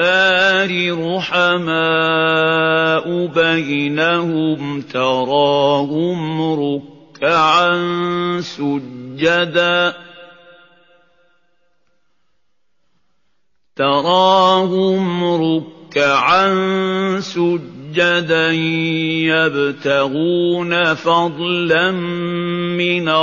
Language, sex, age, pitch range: Indonesian, male, 50-69, 145-175 Hz